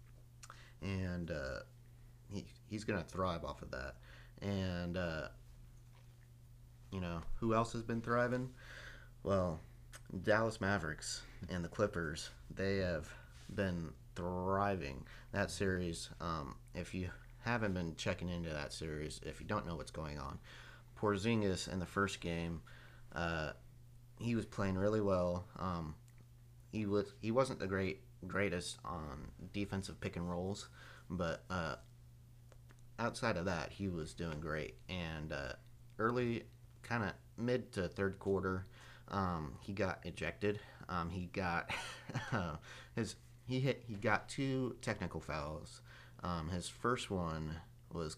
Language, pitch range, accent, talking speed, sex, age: English, 85-120 Hz, American, 135 wpm, male, 30-49